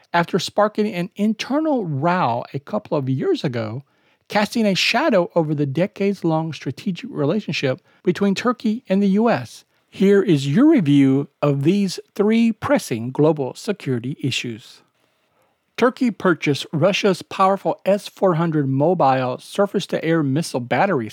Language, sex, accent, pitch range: English, male, American, 135-195 Hz